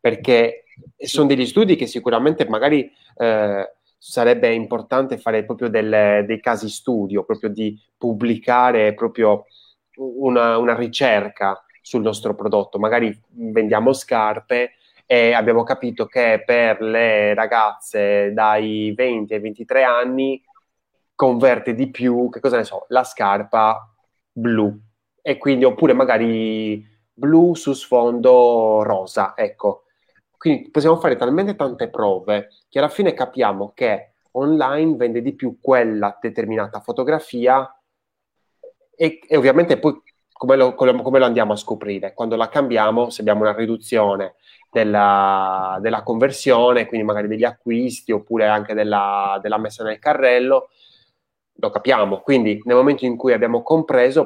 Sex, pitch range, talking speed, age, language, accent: male, 105-130 Hz, 130 wpm, 20-39, Italian, native